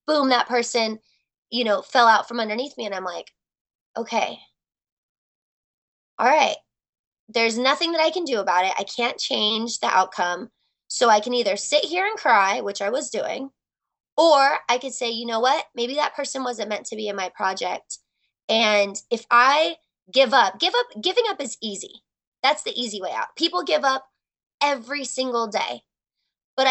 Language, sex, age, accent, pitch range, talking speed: English, female, 20-39, American, 220-275 Hz, 180 wpm